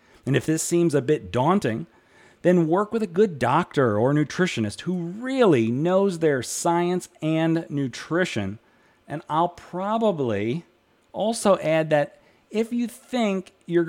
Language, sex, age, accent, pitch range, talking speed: English, male, 40-59, American, 120-180 Hz, 140 wpm